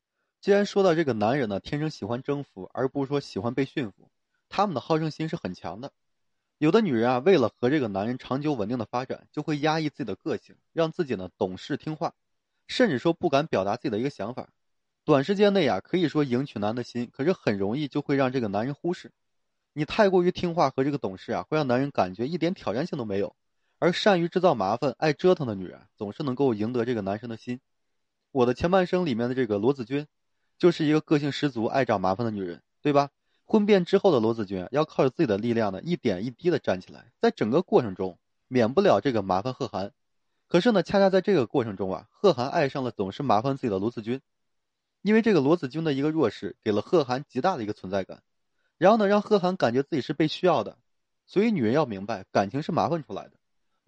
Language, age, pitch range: Chinese, 20-39, 120-170 Hz